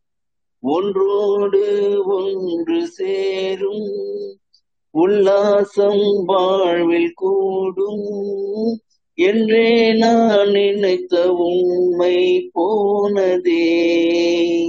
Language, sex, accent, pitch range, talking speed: Tamil, male, native, 190-250 Hz, 45 wpm